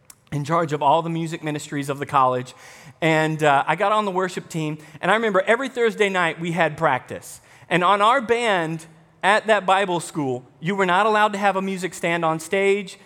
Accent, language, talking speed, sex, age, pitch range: American, English, 210 wpm, male, 40-59, 160-210 Hz